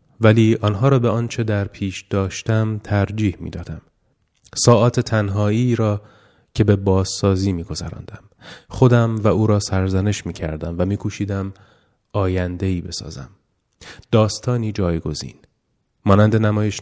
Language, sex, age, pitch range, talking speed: Persian, male, 30-49, 95-115 Hz, 115 wpm